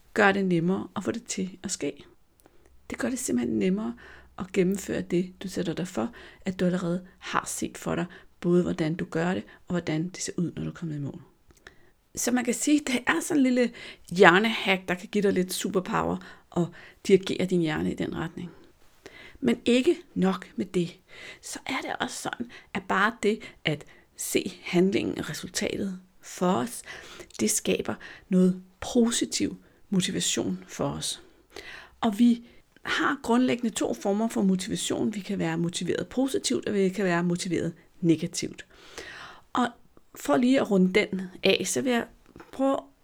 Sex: female